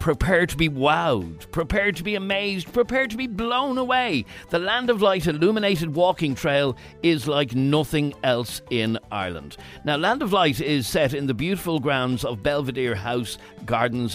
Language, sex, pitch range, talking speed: English, male, 115-155 Hz, 170 wpm